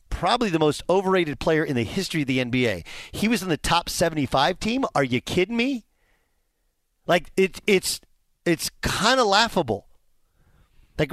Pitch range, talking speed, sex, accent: 145-190 Hz, 150 wpm, male, American